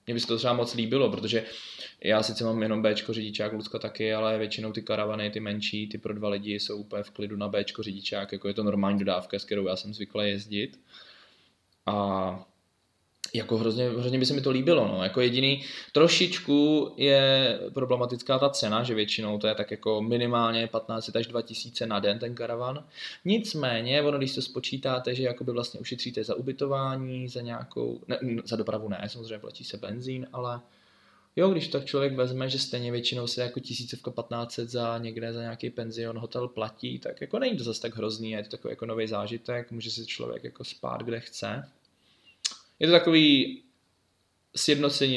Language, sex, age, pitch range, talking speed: Czech, male, 20-39, 105-125 Hz, 185 wpm